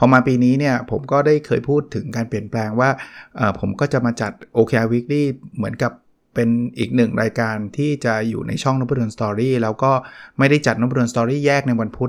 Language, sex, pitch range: Thai, male, 115-140 Hz